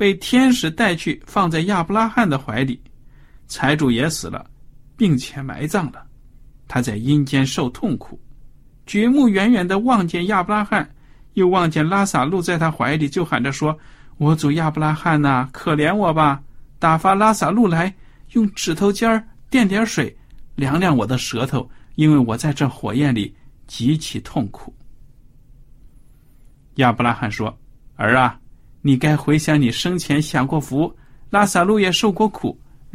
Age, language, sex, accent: 50-69, Chinese, male, native